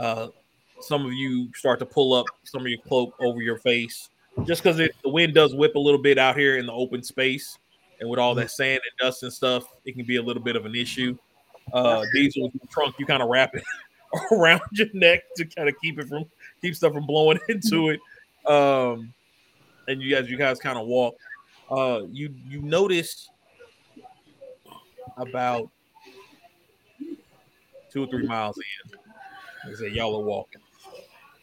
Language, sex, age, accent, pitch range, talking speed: English, male, 30-49, American, 125-175 Hz, 185 wpm